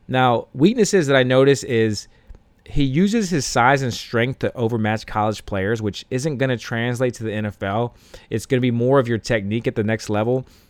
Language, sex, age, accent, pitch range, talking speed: English, male, 30-49, American, 110-130 Hz, 200 wpm